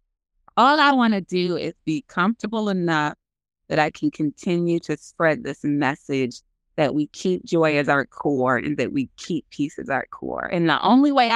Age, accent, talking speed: 30-49, American, 190 wpm